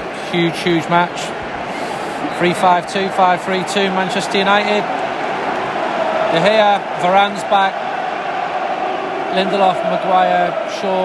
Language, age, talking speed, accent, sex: English, 30-49, 100 wpm, British, male